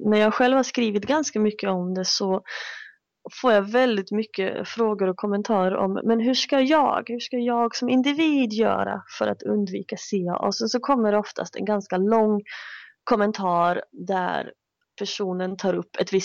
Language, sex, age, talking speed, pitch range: English, female, 20-39, 175 wpm, 195-250 Hz